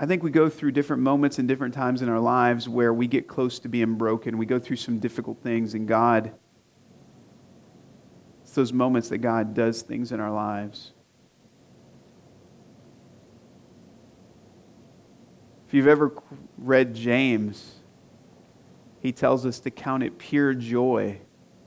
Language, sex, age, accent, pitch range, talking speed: English, male, 40-59, American, 110-140 Hz, 140 wpm